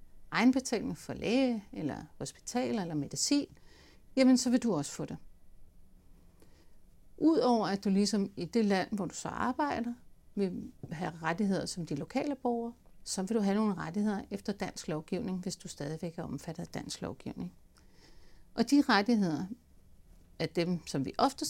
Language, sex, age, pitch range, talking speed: Danish, female, 60-79, 160-240 Hz, 160 wpm